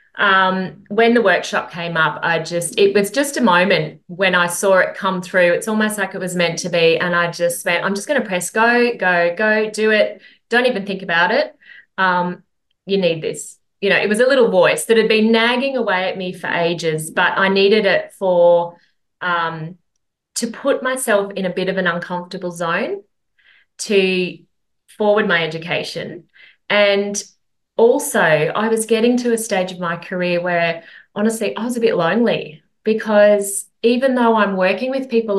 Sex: female